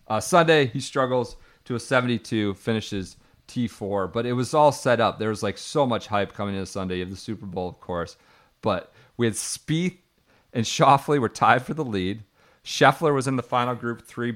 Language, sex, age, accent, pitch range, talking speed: English, male, 40-59, American, 100-125 Hz, 200 wpm